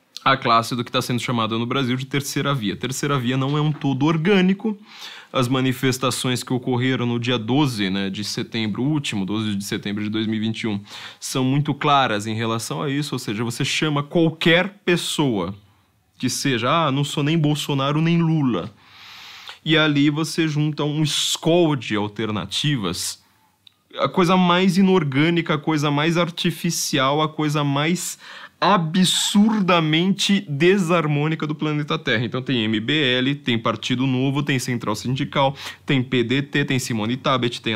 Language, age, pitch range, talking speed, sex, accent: Portuguese, 20-39, 125-160 Hz, 155 wpm, male, Brazilian